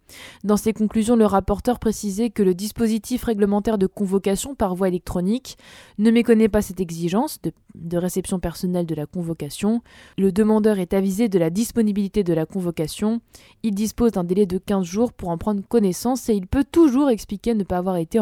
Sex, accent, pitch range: female, French, 185-230 Hz